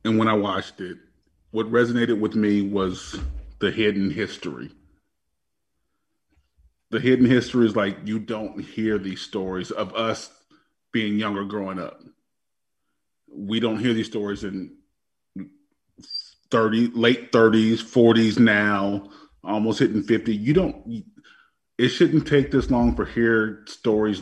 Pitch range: 100-120 Hz